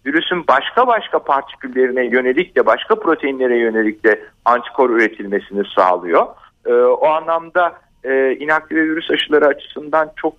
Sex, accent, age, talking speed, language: male, native, 50-69, 125 wpm, Turkish